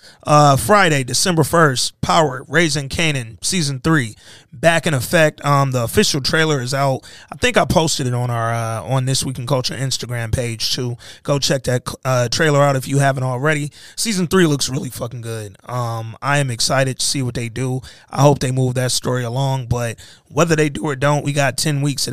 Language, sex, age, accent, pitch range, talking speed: English, male, 20-39, American, 125-150 Hz, 210 wpm